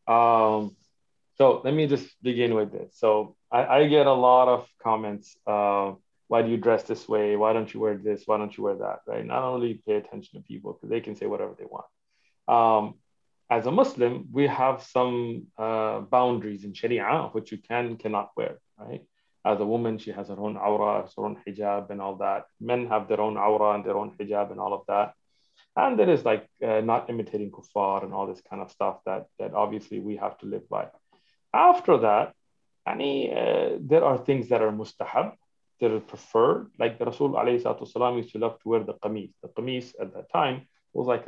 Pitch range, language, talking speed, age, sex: 105-125 Hz, English, 210 wpm, 20-39, male